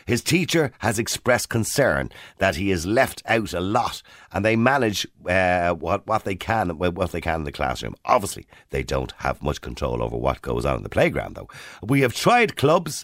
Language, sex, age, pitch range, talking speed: English, male, 50-69, 85-135 Hz, 200 wpm